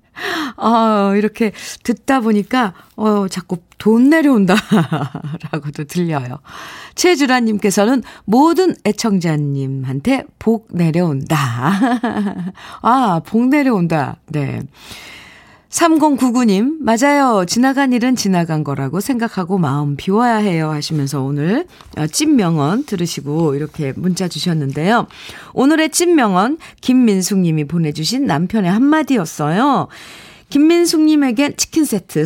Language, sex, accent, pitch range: Korean, female, native, 155-250 Hz